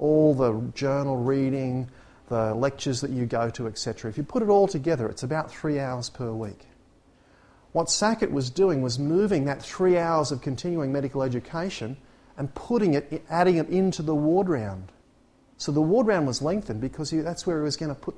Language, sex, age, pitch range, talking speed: English, male, 40-59, 120-155 Hz, 195 wpm